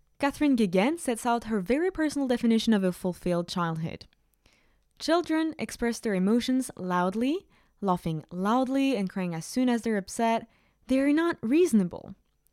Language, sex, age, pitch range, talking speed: English, female, 20-39, 185-255 Hz, 145 wpm